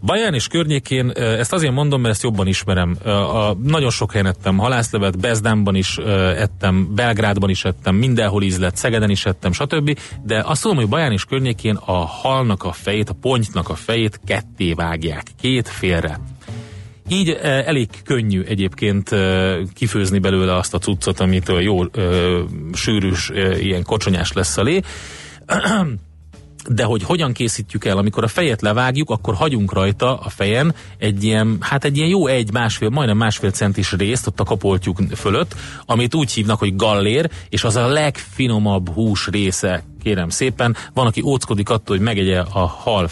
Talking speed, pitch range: 155 wpm, 95-120 Hz